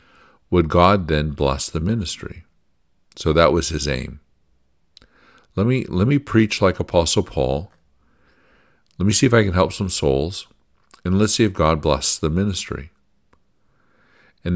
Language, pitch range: English, 75-90 Hz